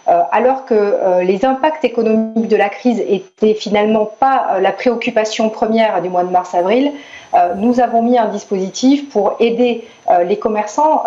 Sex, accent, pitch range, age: female, French, 205-245 Hz, 40-59